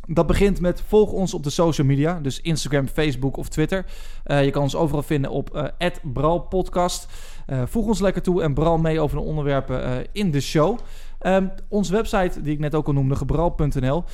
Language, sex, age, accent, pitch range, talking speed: Dutch, male, 20-39, Dutch, 135-175 Hz, 205 wpm